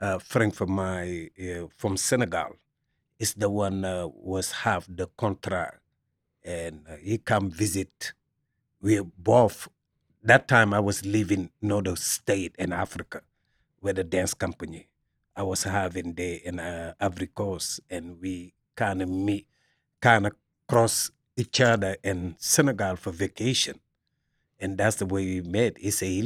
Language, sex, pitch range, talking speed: English, male, 95-115 Hz, 155 wpm